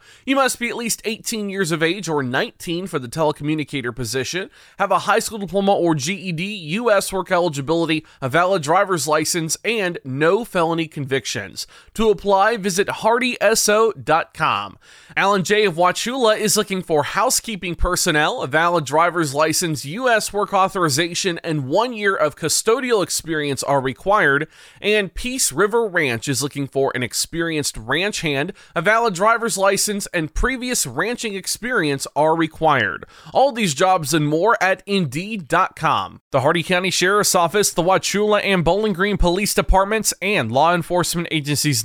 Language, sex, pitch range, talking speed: English, male, 155-200 Hz, 150 wpm